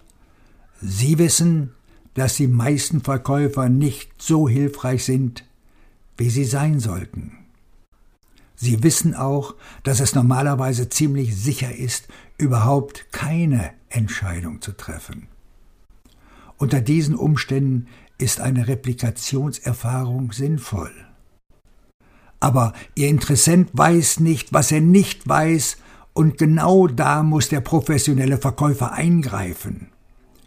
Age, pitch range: 60-79, 115-150 Hz